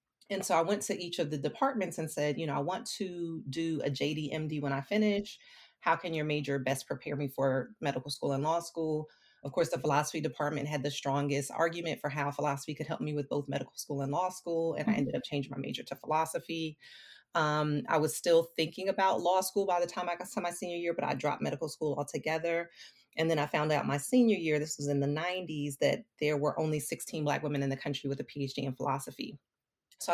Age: 30-49